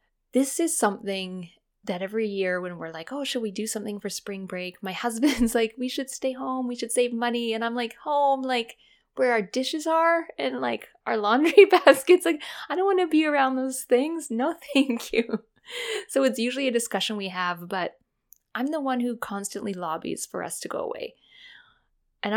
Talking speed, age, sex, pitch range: 200 wpm, 20-39, female, 190-260 Hz